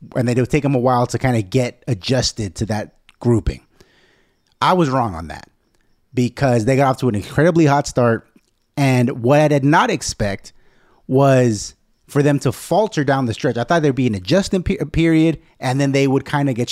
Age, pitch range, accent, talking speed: 30-49, 115-160 Hz, American, 205 wpm